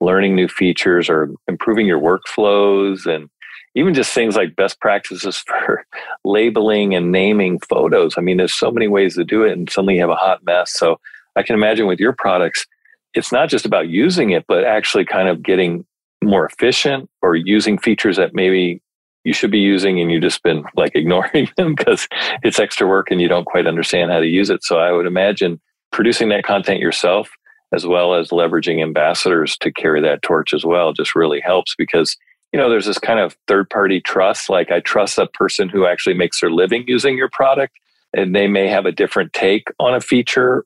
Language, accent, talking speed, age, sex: English, American, 205 wpm, 40-59, male